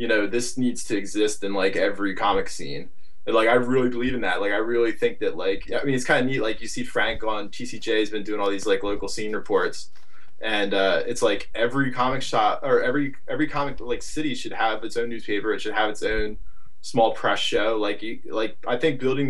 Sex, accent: male, American